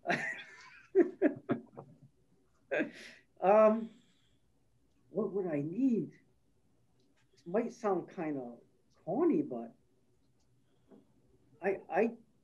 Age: 50-69